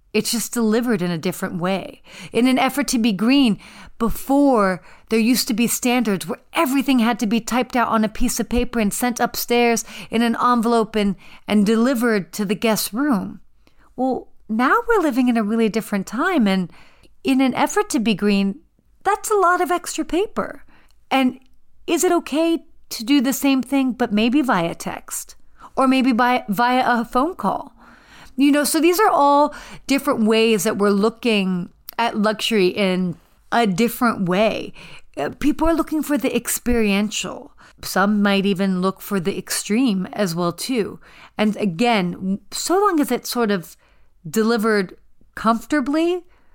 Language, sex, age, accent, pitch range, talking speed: English, female, 40-59, American, 205-265 Hz, 165 wpm